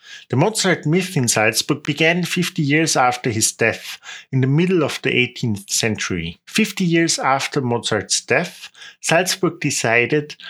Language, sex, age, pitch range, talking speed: English, male, 50-69, 115-155 Hz, 145 wpm